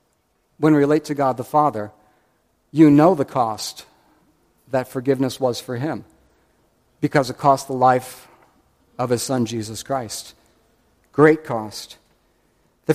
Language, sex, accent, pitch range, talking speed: English, male, American, 145-195 Hz, 135 wpm